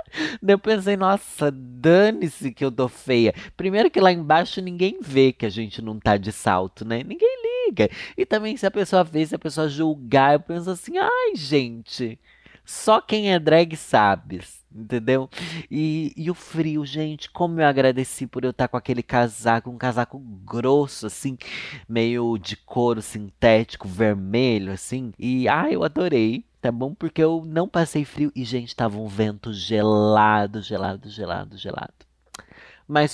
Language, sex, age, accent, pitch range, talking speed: Portuguese, male, 20-39, Brazilian, 110-150 Hz, 165 wpm